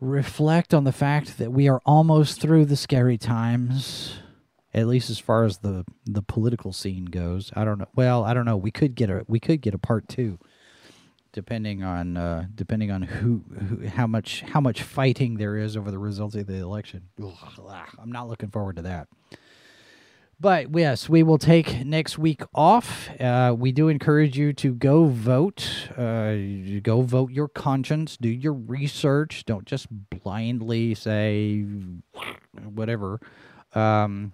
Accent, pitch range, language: American, 105-140 Hz, English